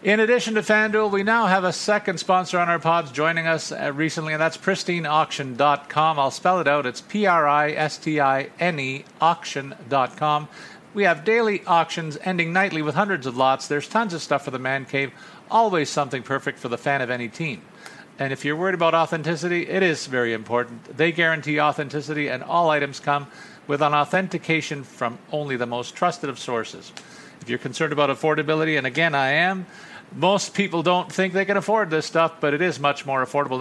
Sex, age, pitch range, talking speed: male, 50-69, 140-175 Hz, 185 wpm